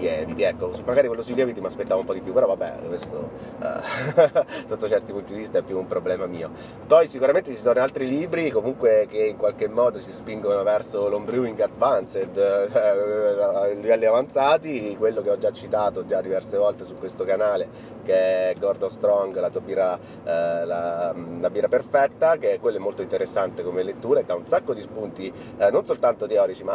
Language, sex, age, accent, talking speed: Italian, male, 30-49, native, 200 wpm